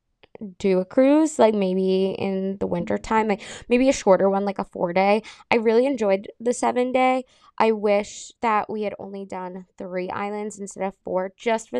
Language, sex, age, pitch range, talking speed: English, female, 20-39, 190-235 Hz, 195 wpm